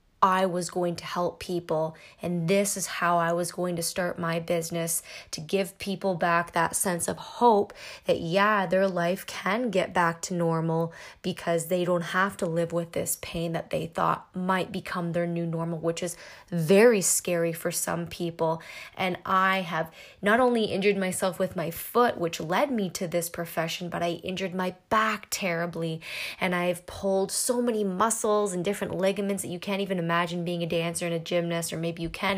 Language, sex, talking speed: English, female, 195 wpm